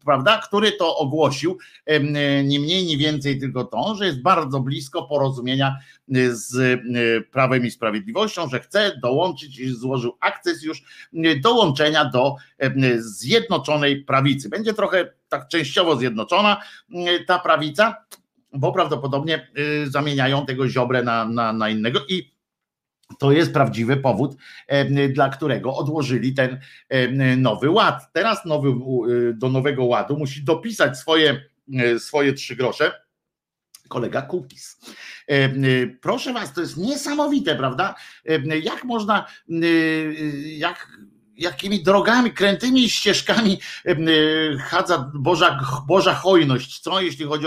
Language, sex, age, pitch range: Polish, male, 50-69, 135-180 Hz